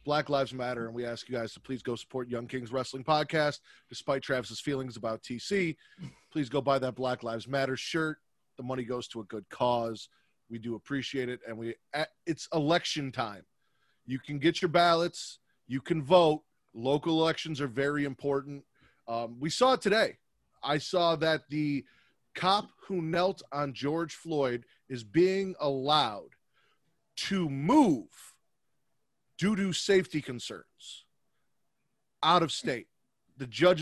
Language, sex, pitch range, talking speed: English, male, 130-165 Hz, 155 wpm